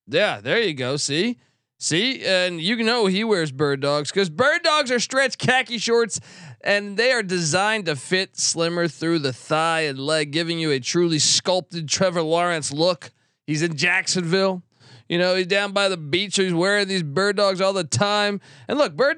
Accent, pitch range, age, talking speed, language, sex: American, 145-195 Hz, 20-39, 195 wpm, English, male